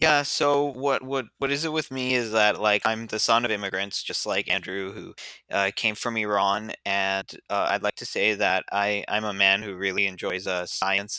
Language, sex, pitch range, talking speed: English, male, 105-125 Hz, 220 wpm